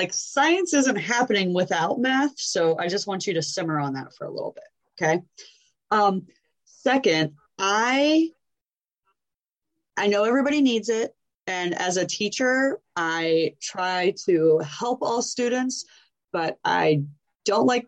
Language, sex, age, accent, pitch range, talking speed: English, female, 20-39, American, 160-230 Hz, 140 wpm